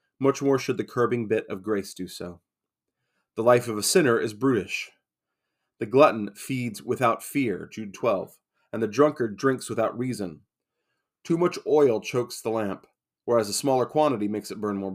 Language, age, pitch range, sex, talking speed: English, 30-49, 105-135 Hz, male, 175 wpm